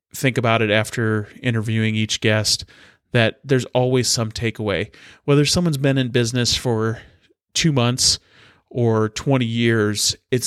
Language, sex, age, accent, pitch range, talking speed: English, male, 30-49, American, 110-130 Hz, 140 wpm